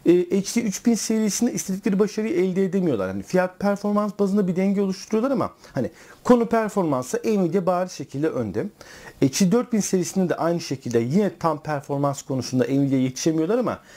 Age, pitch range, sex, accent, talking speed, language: 50-69, 140-205 Hz, male, native, 150 wpm, Turkish